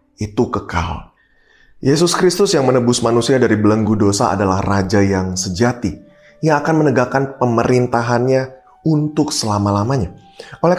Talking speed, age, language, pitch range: 115 wpm, 20-39, Indonesian, 105-140 Hz